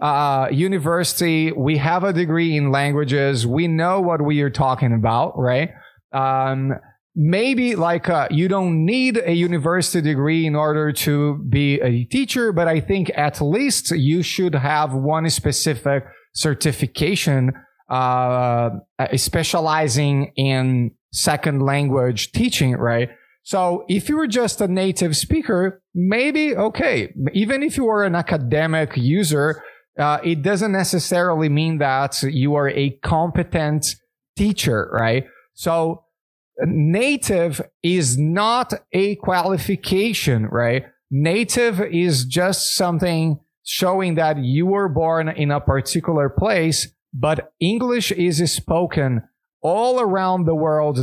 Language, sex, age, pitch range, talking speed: English, male, 30-49, 140-185 Hz, 125 wpm